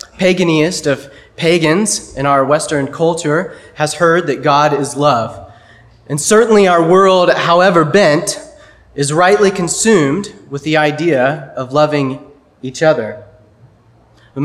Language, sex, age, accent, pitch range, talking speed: English, male, 30-49, American, 135-170 Hz, 125 wpm